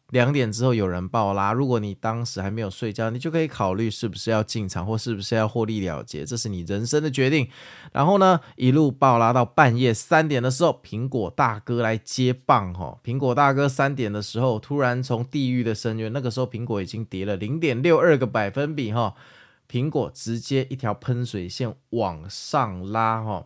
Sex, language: male, Chinese